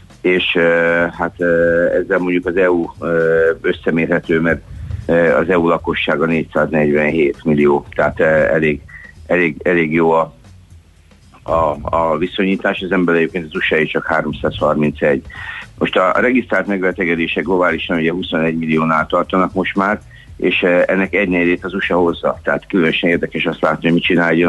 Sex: male